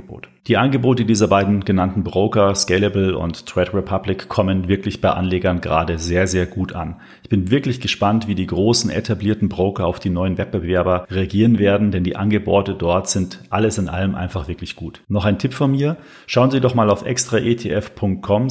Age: 40-59